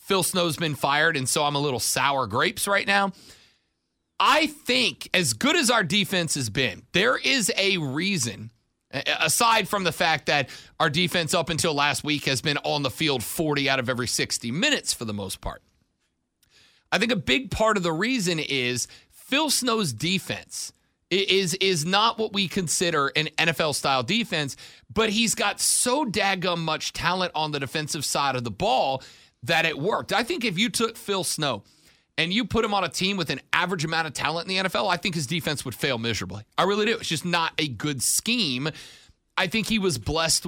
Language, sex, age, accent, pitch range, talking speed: English, male, 40-59, American, 135-195 Hz, 200 wpm